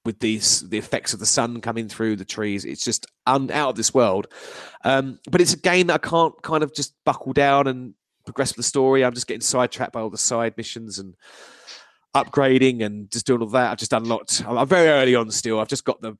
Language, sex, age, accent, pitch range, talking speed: English, male, 30-49, British, 105-140 Hz, 235 wpm